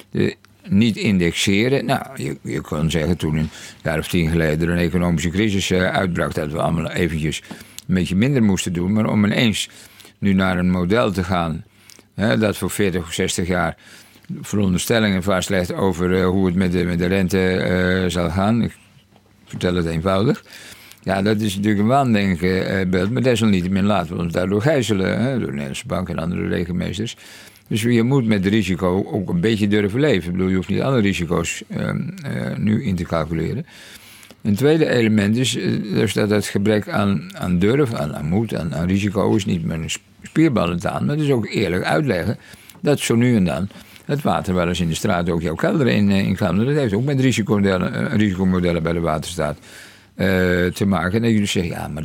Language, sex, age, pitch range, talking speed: Dutch, male, 60-79, 90-110 Hz, 200 wpm